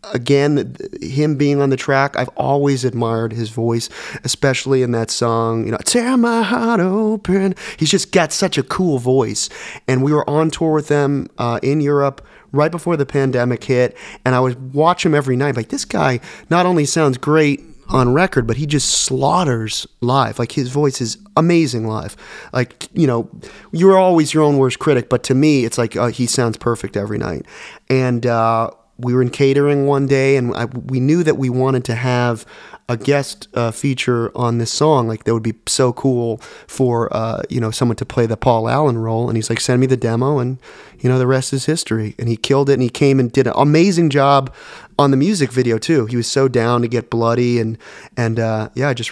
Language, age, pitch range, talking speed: English, 30-49, 115-145 Hz, 215 wpm